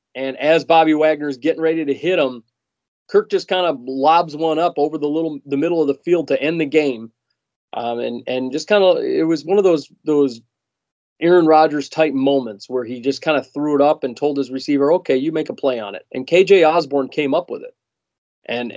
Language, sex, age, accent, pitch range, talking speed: English, male, 30-49, American, 130-155 Hz, 225 wpm